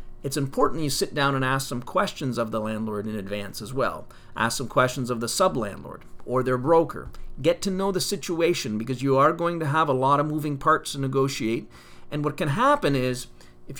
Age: 40-59